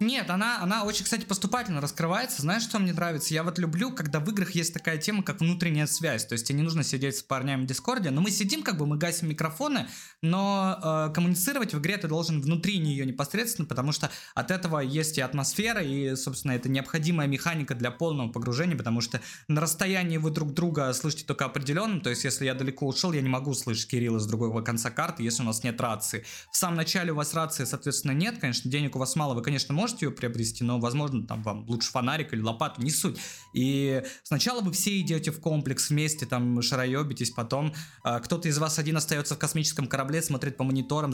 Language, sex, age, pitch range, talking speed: Russian, male, 20-39, 130-175 Hz, 215 wpm